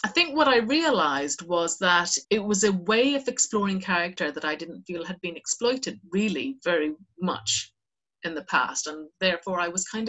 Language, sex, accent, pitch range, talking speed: English, female, British, 175-220 Hz, 190 wpm